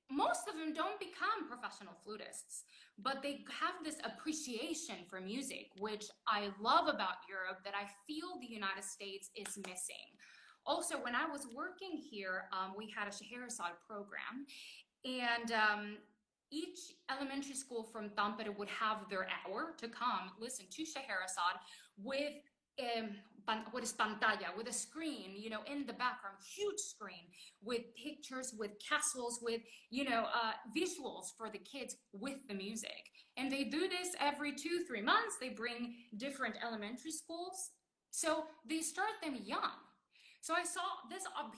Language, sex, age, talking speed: English, female, 20-39, 155 wpm